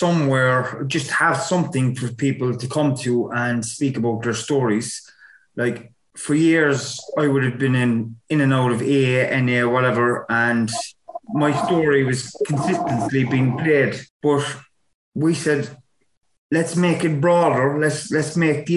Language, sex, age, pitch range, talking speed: English, male, 30-49, 125-150 Hz, 150 wpm